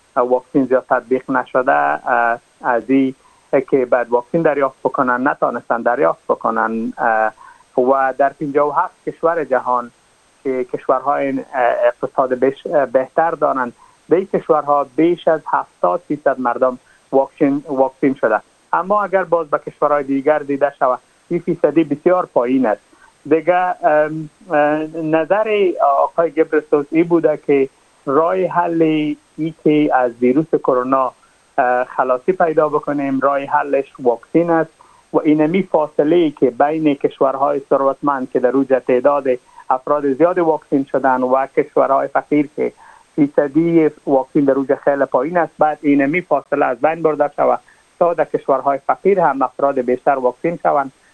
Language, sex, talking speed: Persian, male, 135 wpm